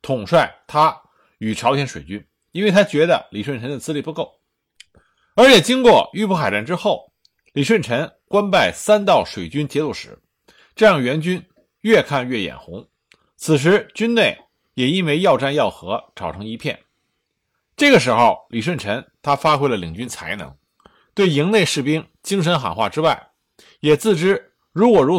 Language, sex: Chinese, male